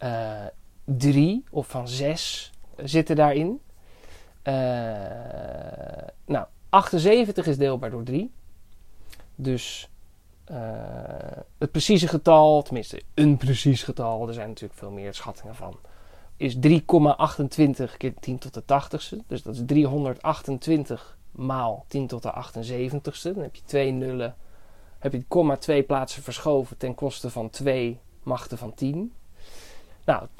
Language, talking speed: Dutch, 130 wpm